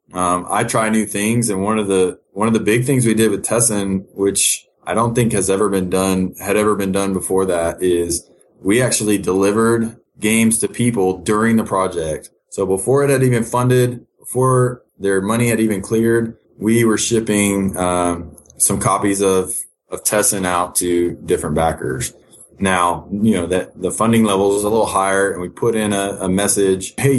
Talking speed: 190 wpm